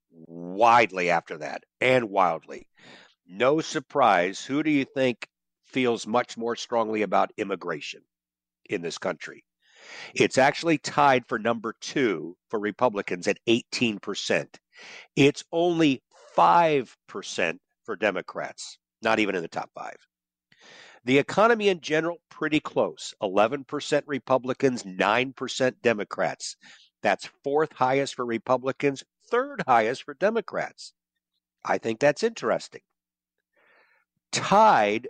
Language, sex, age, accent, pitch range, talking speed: English, male, 50-69, American, 85-140 Hz, 120 wpm